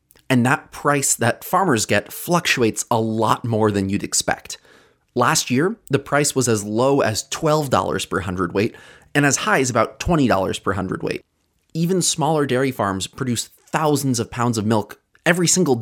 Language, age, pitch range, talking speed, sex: English, 30-49, 105-145 Hz, 165 wpm, male